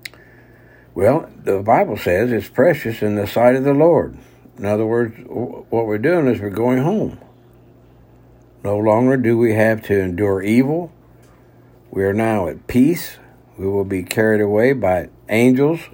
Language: English